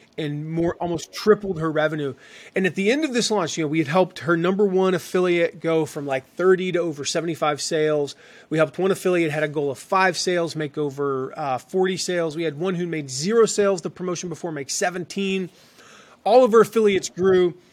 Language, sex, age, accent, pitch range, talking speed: English, male, 30-49, American, 160-205 Hz, 210 wpm